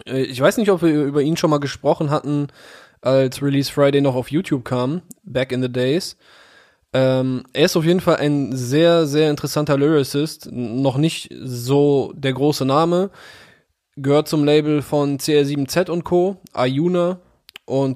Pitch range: 135-160 Hz